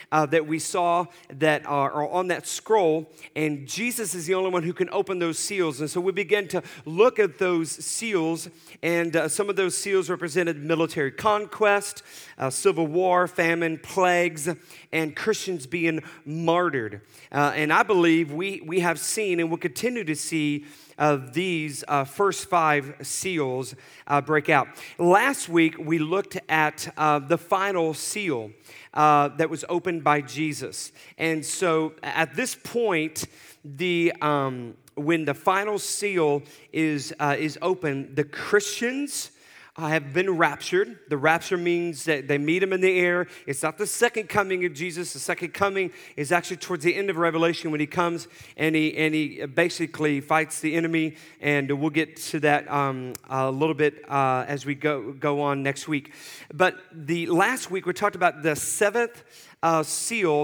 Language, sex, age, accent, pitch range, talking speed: English, male, 40-59, American, 150-180 Hz, 170 wpm